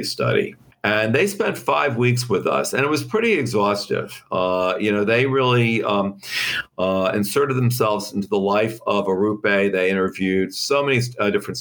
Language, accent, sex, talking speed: English, American, male, 170 wpm